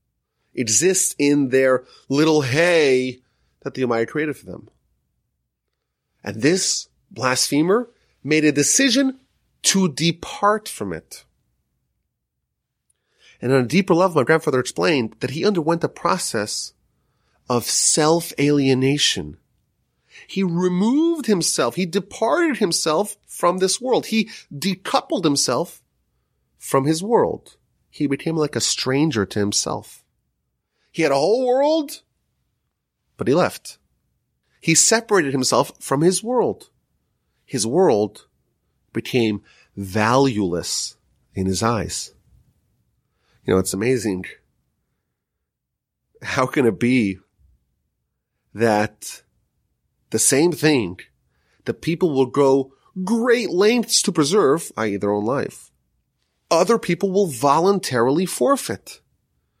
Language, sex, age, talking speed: English, male, 30-49, 110 wpm